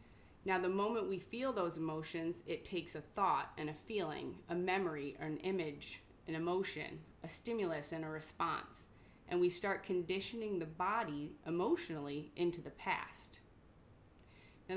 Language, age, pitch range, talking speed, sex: English, 20-39, 155-180 Hz, 150 wpm, female